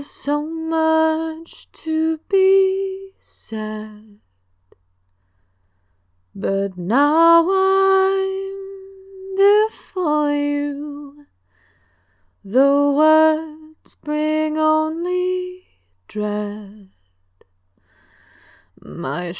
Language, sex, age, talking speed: English, female, 20-39, 50 wpm